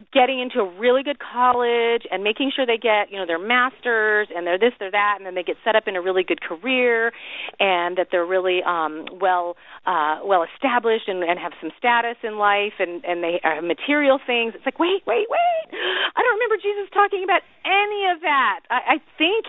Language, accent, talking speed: English, American, 215 wpm